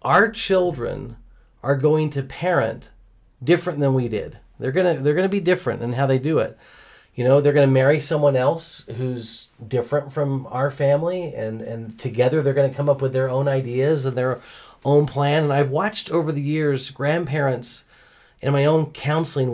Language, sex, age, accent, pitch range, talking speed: English, male, 40-59, American, 125-160 Hz, 185 wpm